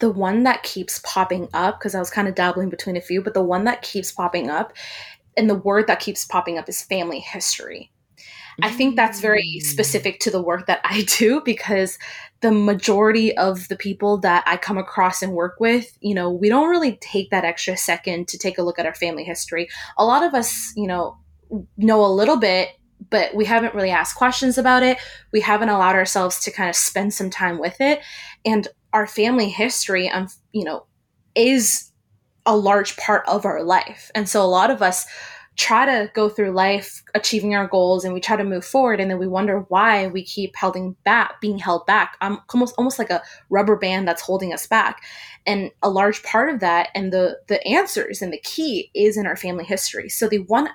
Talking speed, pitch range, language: 215 wpm, 185-220 Hz, English